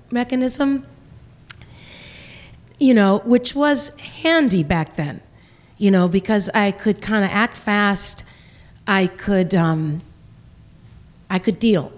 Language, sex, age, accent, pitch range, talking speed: English, female, 40-59, American, 165-210 Hz, 115 wpm